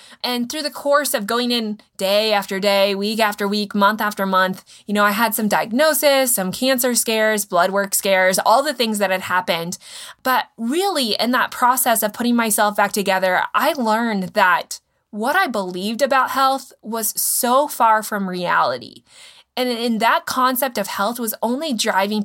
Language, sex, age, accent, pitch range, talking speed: English, female, 20-39, American, 200-260 Hz, 180 wpm